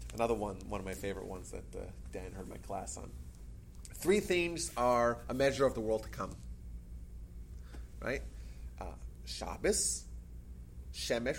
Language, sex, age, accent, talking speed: English, male, 30-49, American, 150 wpm